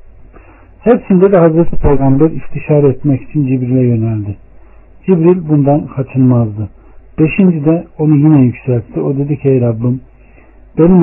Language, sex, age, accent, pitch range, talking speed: Turkish, male, 60-79, native, 125-155 Hz, 125 wpm